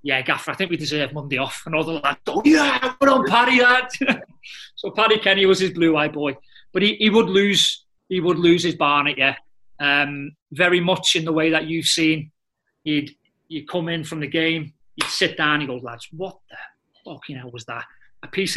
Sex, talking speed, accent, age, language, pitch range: male, 220 wpm, British, 30-49, English, 150-245 Hz